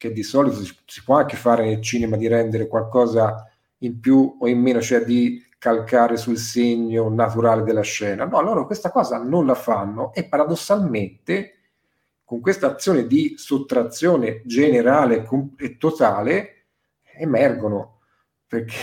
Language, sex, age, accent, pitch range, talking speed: Italian, male, 40-59, native, 115-135 Hz, 145 wpm